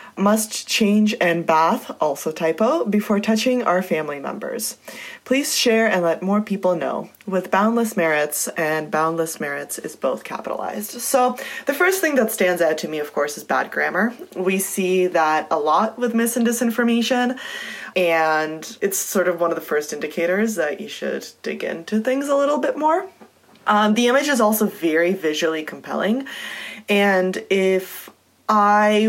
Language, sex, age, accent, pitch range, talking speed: English, female, 20-39, American, 160-220 Hz, 165 wpm